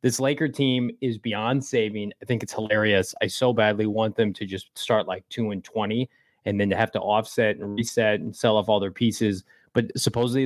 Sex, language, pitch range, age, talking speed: male, English, 105-130 Hz, 30-49, 210 wpm